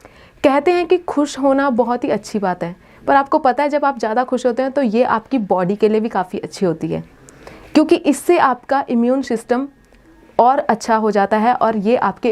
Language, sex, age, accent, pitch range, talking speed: Hindi, female, 30-49, native, 205-275 Hz, 215 wpm